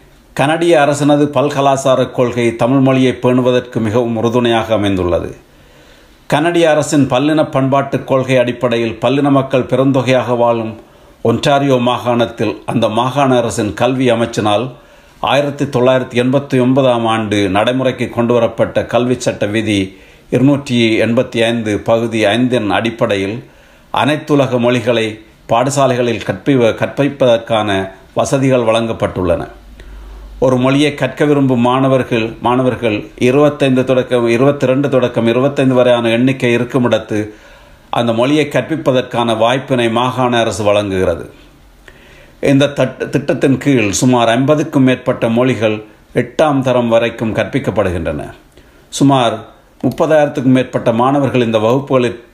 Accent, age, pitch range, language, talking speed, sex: native, 50-69, 115-135 Hz, Tamil, 100 wpm, male